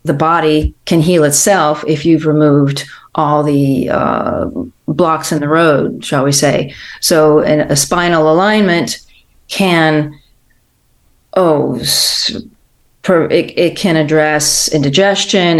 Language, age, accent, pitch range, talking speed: English, 40-59, American, 145-165 Hz, 115 wpm